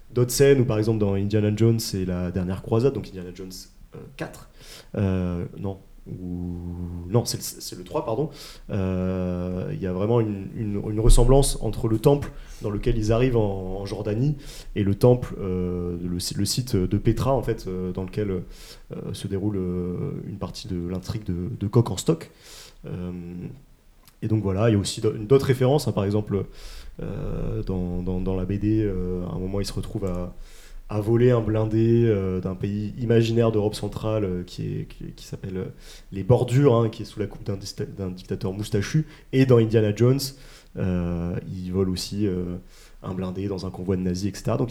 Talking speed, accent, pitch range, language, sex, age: 195 wpm, French, 95-115 Hz, French, male, 30-49